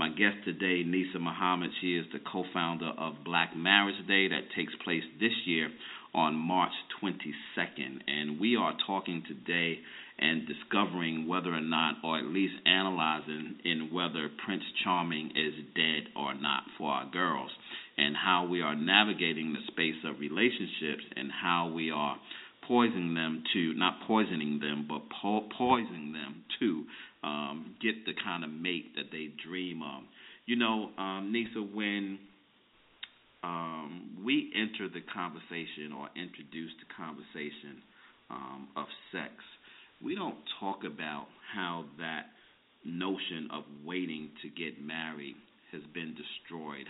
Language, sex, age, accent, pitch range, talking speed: English, male, 40-59, American, 75-95 Hz, 140 wpm